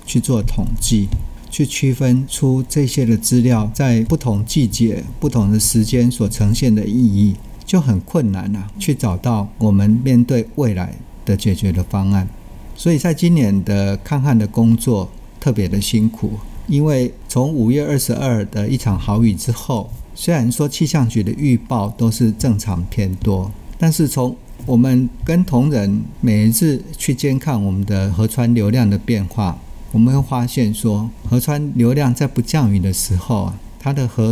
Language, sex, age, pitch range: Chinese, male, 50-69, 105-125 Hz